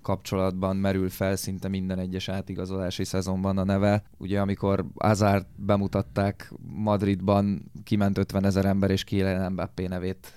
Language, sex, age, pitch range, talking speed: Hungarian, male, 20-39, 95-105 Hz, 125 wpm